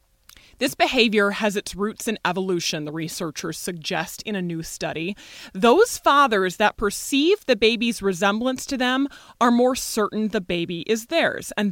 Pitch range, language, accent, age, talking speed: 185-260 Hz, English, American, 20-39, 160 wpm